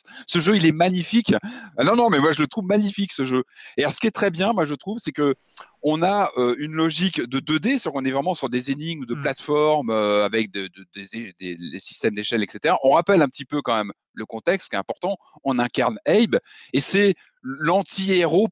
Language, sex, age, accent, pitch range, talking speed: French, male, 30-49, French, 120-175 Hz, 215 wpm